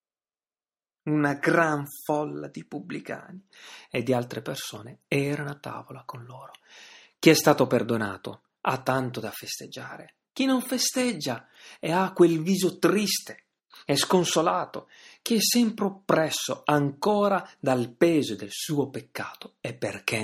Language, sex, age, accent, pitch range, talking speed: Italian, male, 30-49, native, 120-185 Hz, 130 wpm